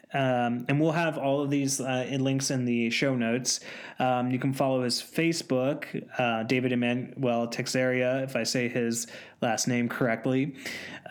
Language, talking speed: English, 170 wpm